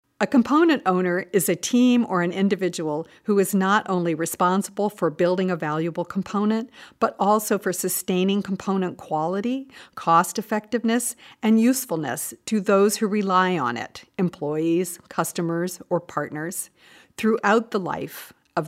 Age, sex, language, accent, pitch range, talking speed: 50-69, female, English, American, 175-220 Hz, 135 wpm